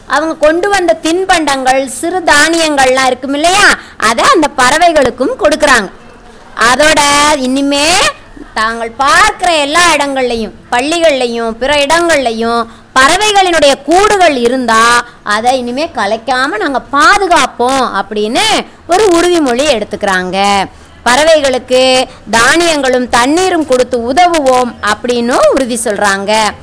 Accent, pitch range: native, 250-325 Hz